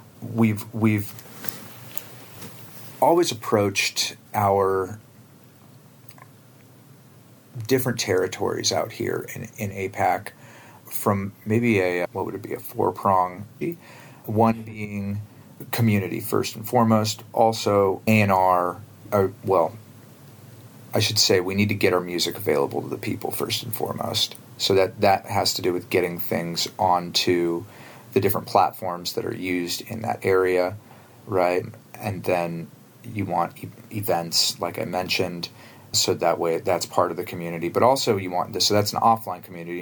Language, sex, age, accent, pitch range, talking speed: English, male, 40-59, American, 95-120 Hz, 145 wpm